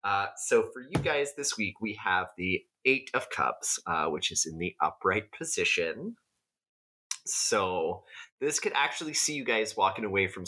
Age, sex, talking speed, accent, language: 30-49, male, 170 wpm, American, English